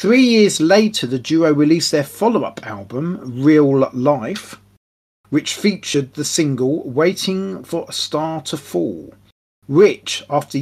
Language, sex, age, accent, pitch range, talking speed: English, male, 40-59, British, 130-170 Hz, 130 wpm